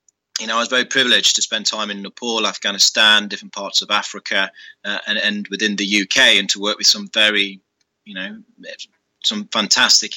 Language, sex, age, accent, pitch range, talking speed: English, male, 30-49, British, 105-130 Hz, 190 wpm